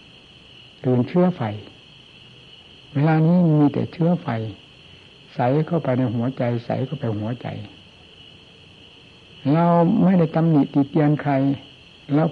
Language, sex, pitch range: Thai, male, 120-160 Hz